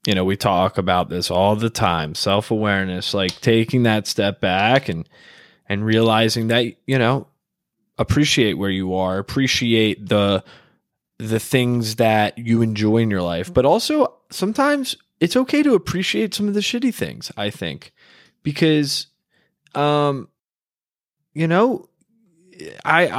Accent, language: American, English